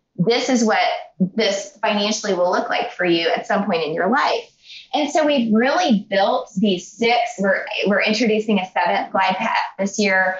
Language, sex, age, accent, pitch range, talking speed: English, female, 20-39, American, 185-235 Hz, 185 wpm